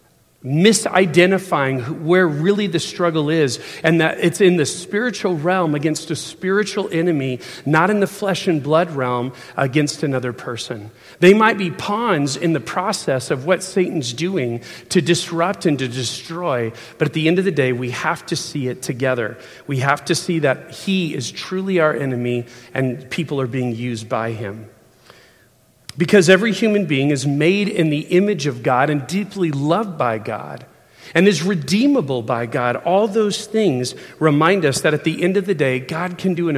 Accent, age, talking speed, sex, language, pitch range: American, 40-59, 180 wpm, male, English, 125-180 Hz